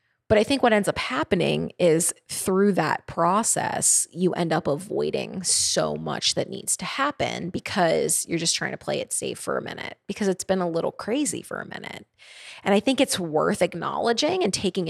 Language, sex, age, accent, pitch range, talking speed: English, female, 20-39, American, 190-265 Hz, 195 wpm